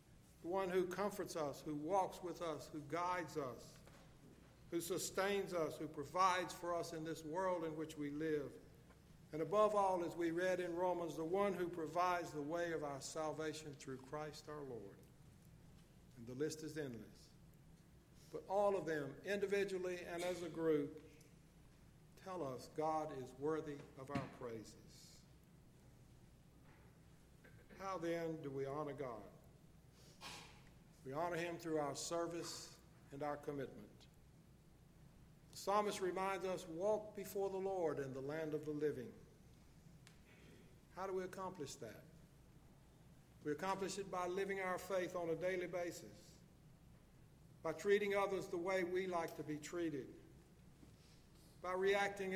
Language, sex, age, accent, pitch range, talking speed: English, male, 60-79, American, 150-185 Hz, 145 wpm